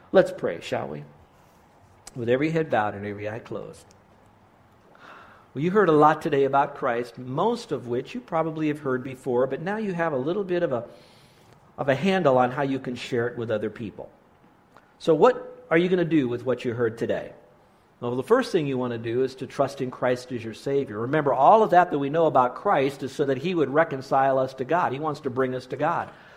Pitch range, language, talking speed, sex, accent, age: 125-155 Hz, English, 230 wpm, male, American, 50-69